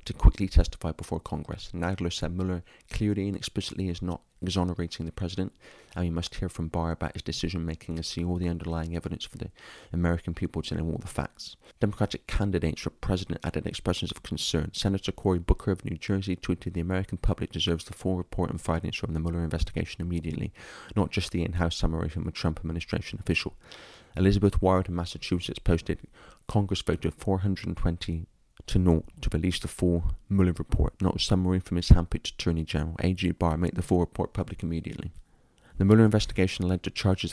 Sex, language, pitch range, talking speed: male, English, 80-95 Hz, 190 wpm